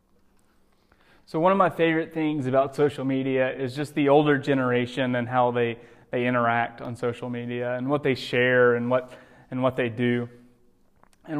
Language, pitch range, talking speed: English, 120-135 Hz, 175 wpm